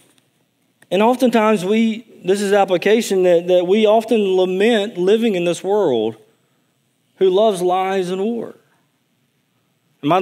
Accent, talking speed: American, 130 wpm